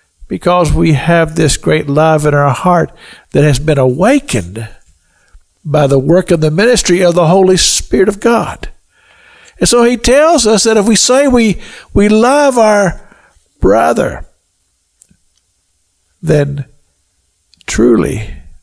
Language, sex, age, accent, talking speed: English, male, 60-79, American, 130 wpm